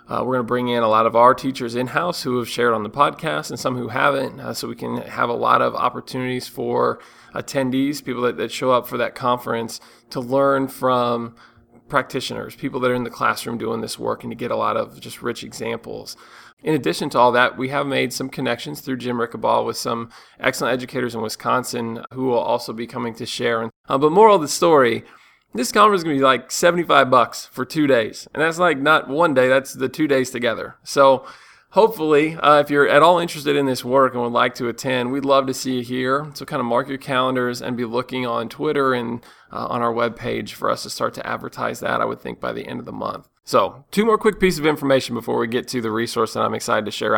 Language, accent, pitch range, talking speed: English, American, 120-145 Hz, 245 wpm